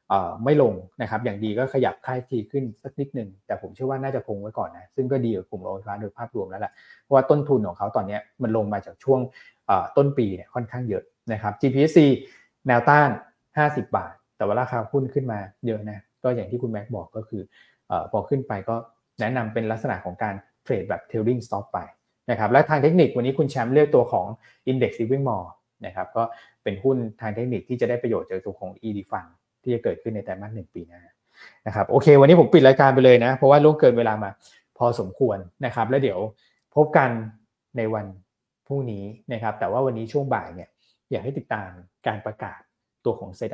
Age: 20-39